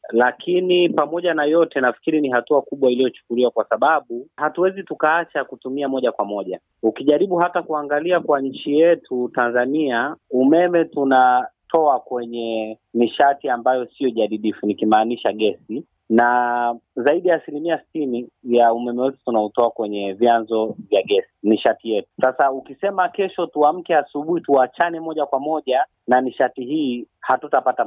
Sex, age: male, 30-49